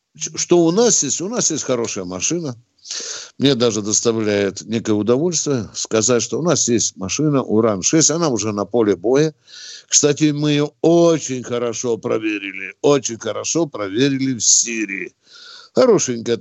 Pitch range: 115-145 Hz